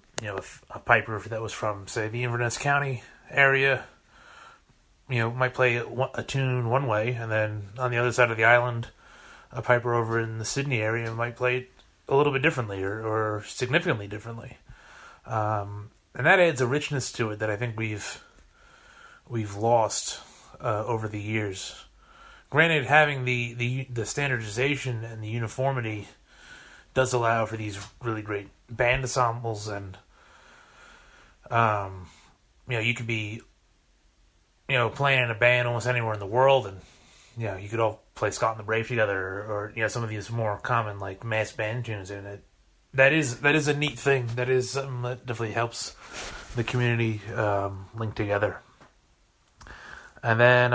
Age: 30-49